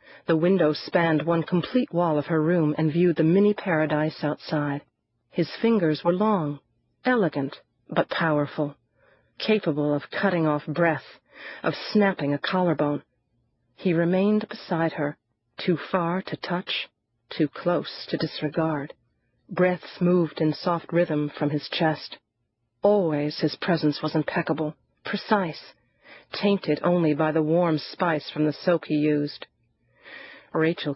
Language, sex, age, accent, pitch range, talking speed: English, female, 40-59, American, 150-175 Hz, 130 wpm